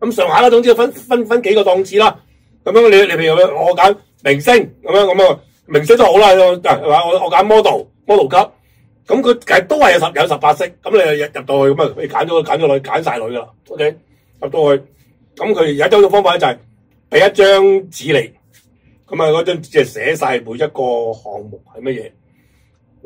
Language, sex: Chinese, male